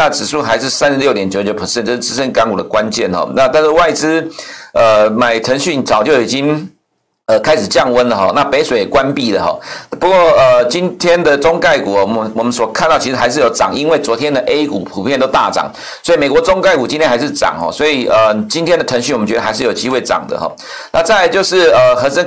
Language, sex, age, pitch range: Chinese, male, 50-69, 125-185 Hz